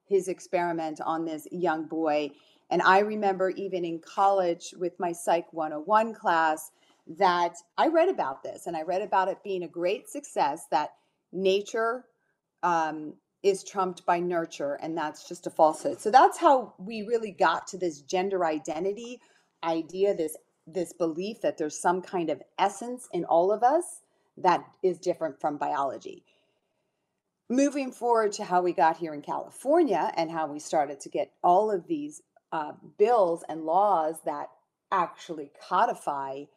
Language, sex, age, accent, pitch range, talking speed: English, female, 40-59, American, 165-215 Hz, 160 wpm